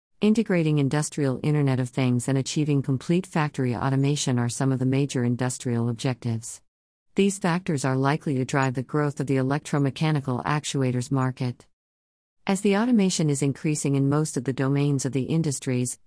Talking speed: 160 wpm